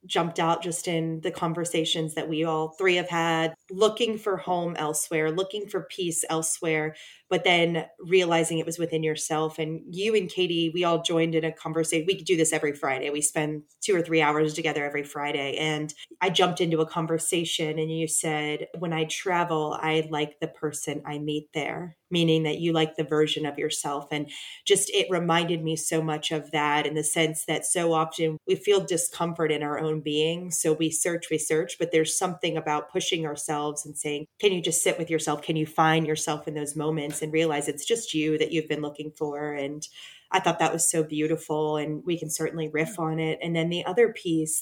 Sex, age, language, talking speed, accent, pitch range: female, 30-49, English, 210 wpm, American, 150-170 Hz